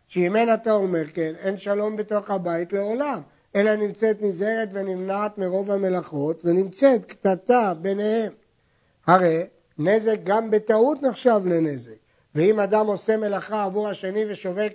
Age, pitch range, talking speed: 60-79, 165-215 Hz, 130 wpm